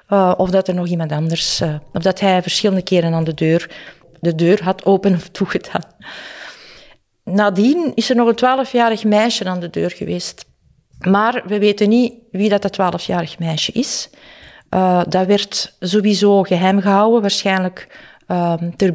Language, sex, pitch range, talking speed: Dutch, female, 175-210 Hz, 160 wpm